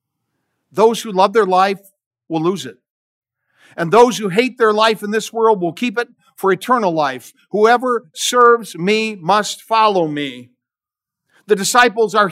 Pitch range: 175-240 Hz